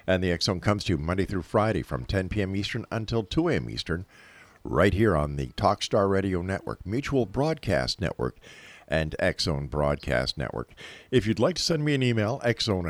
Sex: male